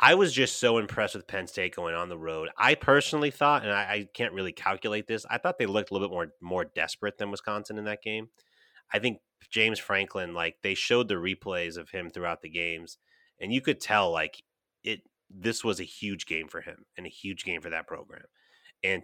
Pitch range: 90-110 Hz